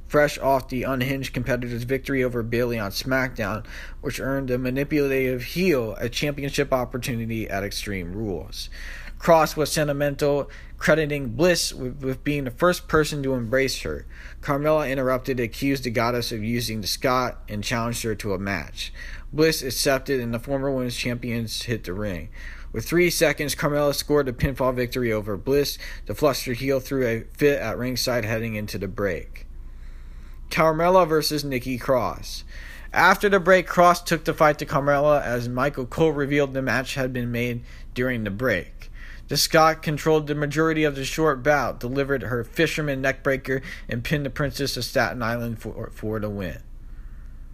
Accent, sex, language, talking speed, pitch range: American, male, English, 165 wpm, 115-145 Hz